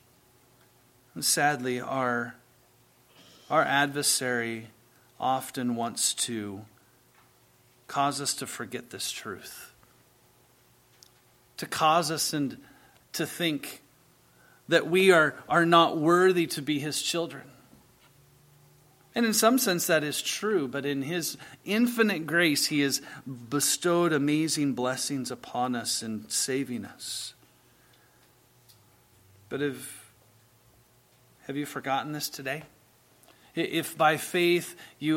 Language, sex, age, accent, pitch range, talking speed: English, male, 40-59, American, 120-150 Hz, 105 wpm